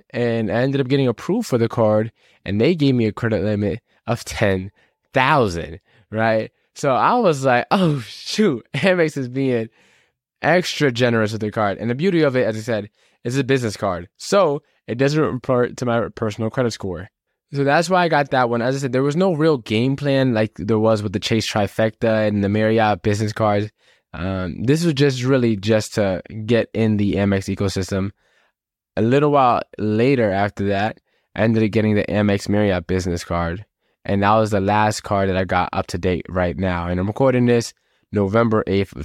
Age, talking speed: 10-29, 200 wpm